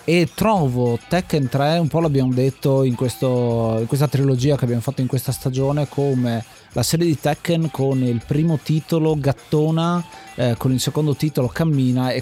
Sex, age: male, 30-49